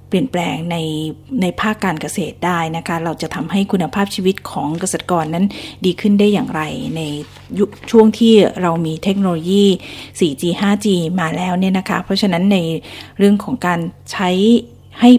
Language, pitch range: Thai, 165-205 Hz